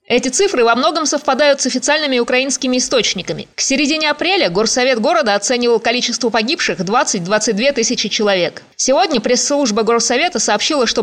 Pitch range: 220-275 Hz